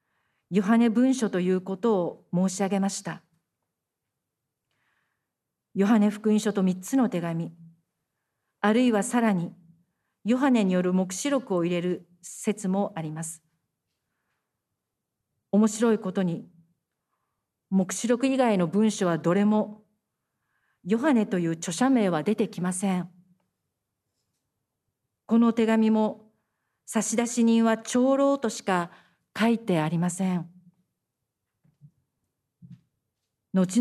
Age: 40-59